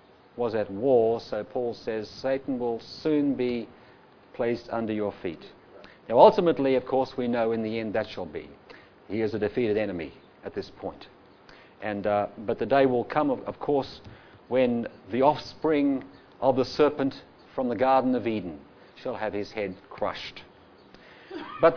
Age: 50-69